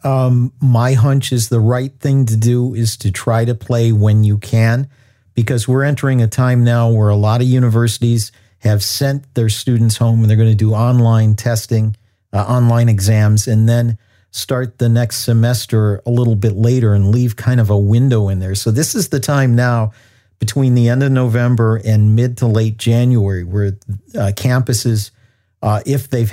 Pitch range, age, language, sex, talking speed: 110-125 Hz, 50-69, English, male, 190 wpm